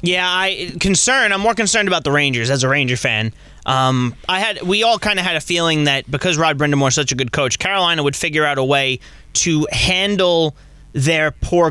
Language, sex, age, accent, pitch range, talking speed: English, male, 20-39, American, 140-165 Hz, 215 wpm